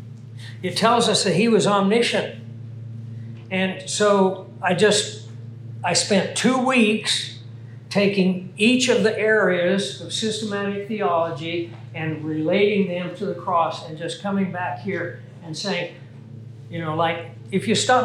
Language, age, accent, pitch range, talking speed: English, 60-79, American, 140-200 Hz, 140 wpm